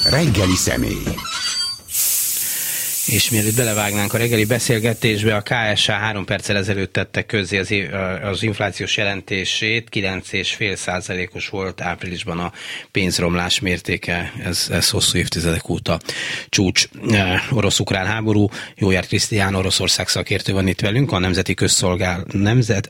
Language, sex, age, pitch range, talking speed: Hungarian, male, 30-49, 95-110 Hz, 120 wpm